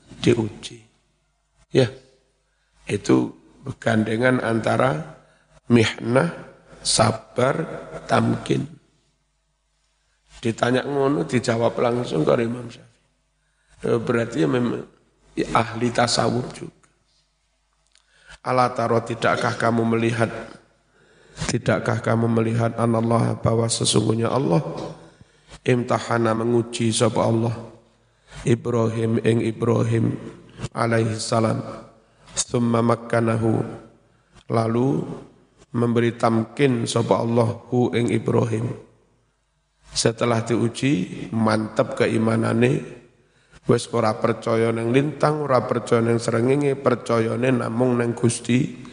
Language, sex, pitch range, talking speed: Indonesian, male, 115-125 Hz, 85 wpm